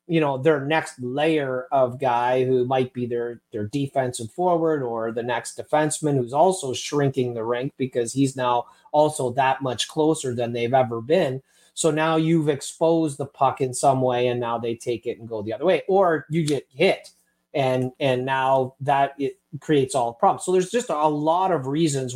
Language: English